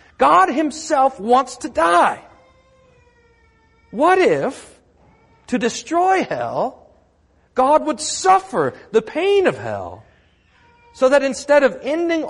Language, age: English, 40-59